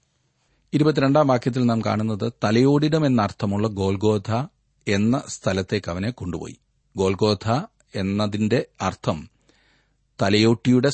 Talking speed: 90 wpm